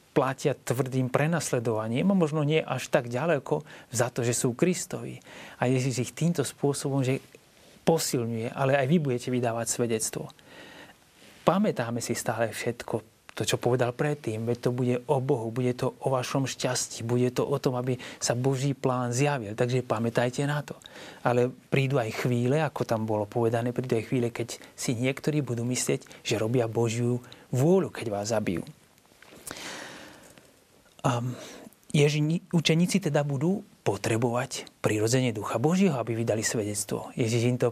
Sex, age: male, 30-49